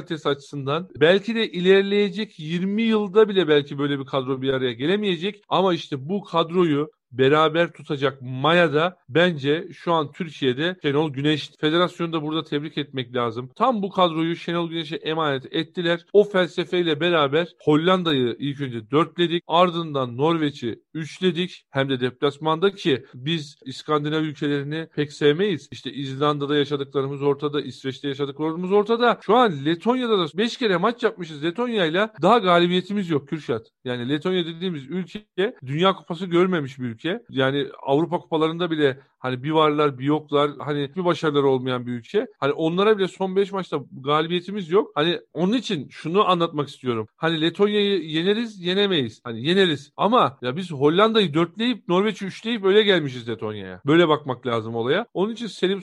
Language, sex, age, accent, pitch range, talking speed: Turkish, male, 40-59, native, 145-185 Hz, 150 wpm